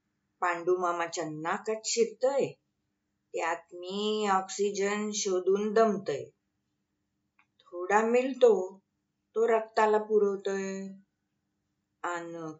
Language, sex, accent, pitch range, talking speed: Marathi, female, native, 180-225 Hz, 65 wpm